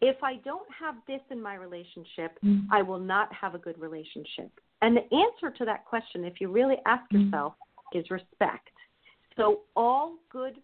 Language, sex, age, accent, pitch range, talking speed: English, female, 40-59, American, 185-235 Hz, 175 wpm